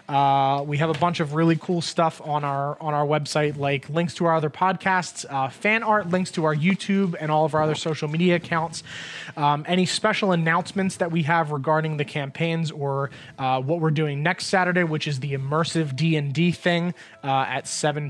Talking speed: 200 wpm